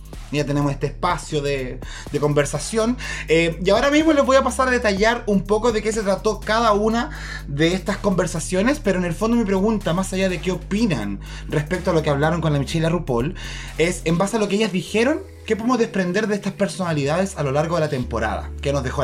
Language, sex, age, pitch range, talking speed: Spanish, male, 20-39, 140-205 Hz, 225 wpm